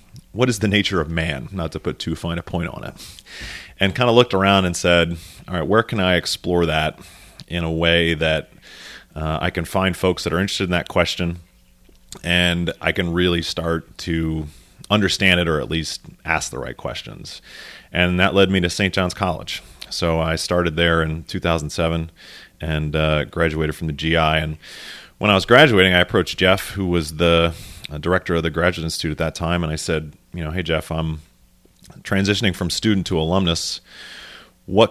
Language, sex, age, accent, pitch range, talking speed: English, male, 30-49, American, 80-95 Hz, 195 wpm